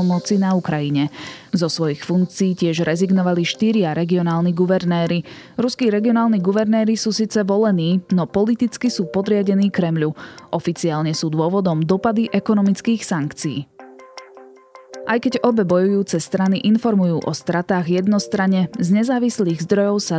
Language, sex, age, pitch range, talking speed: Slovak, female, 20-39, 165-205 Hz, 120 wpm